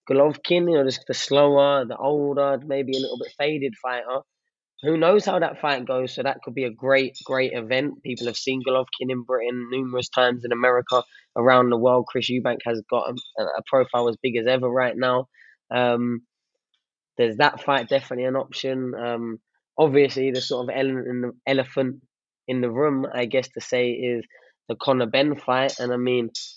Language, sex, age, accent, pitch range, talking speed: English, male, 10-29, British, 120-140 Hz, 175 wpm